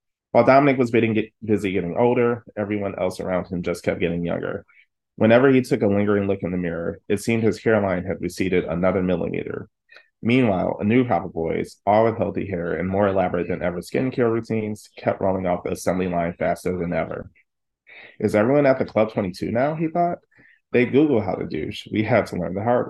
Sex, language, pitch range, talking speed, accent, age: male, English, 90-115 Hz, 200 wpm, American, 20-39